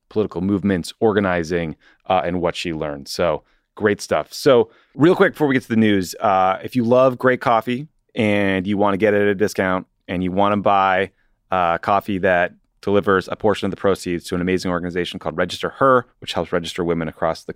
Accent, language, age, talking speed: American, English, 30-49, 210 wpm